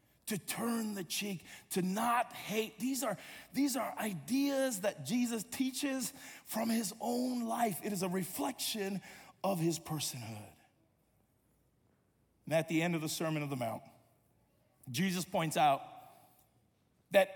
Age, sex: 40-59, male